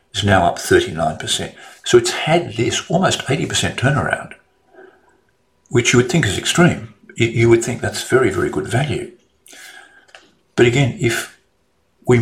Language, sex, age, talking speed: English, male, 50-69, 140 wpm